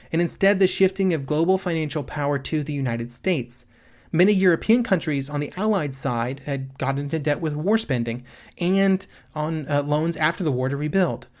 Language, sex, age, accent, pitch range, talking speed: English, male, 30-49, American, 135-170 Hz, 185 wpm